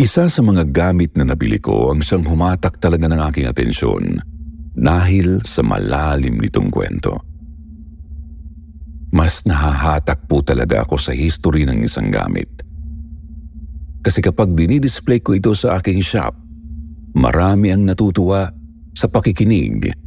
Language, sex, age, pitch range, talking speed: Filipino, male, 50-69, 75-90 Hz, 125 wpm